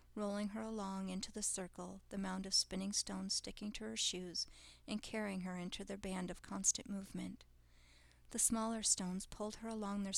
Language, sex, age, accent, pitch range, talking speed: English, female, 40-59, American, 185-210 Hz, 185 wpm